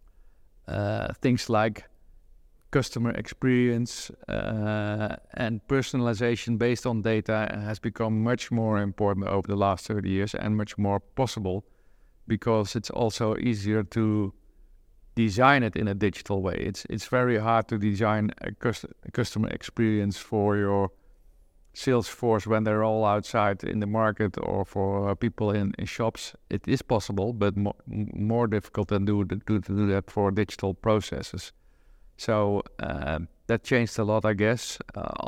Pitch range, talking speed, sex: 100-115 Hz, 150 wpm, male